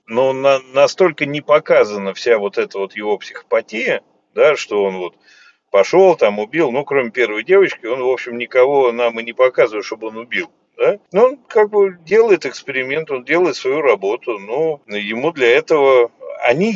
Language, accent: Russian, native